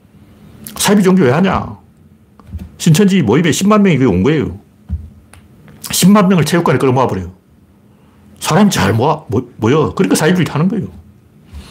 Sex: male